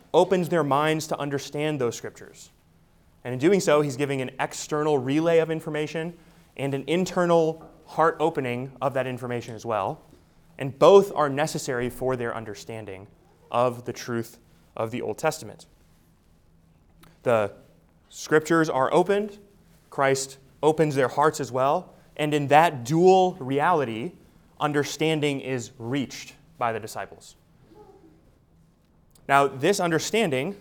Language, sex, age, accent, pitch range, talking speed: English, male, 20-39, American, 115-155 Hz, 130 wpm